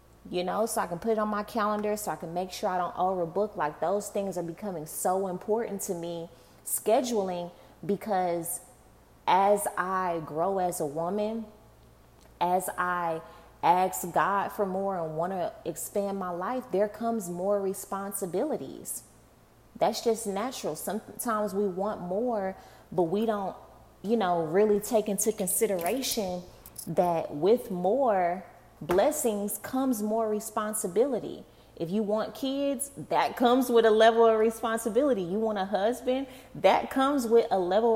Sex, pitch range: female, 180-225 Hz